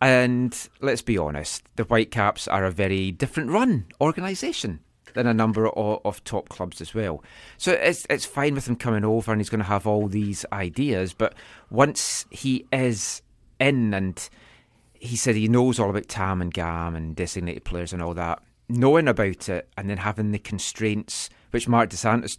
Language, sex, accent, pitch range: English, male, British, 100-125 Hz